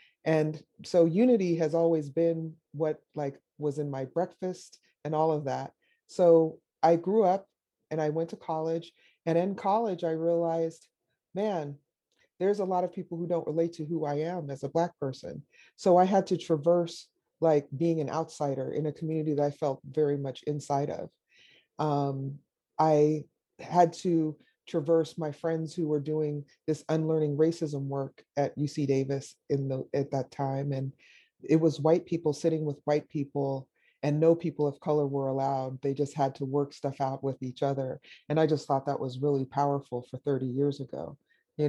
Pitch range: 145-165 Hz